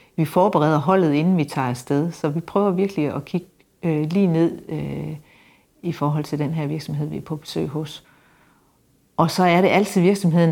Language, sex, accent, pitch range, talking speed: Danish, female, native, 150-170 Hz, 185 wpm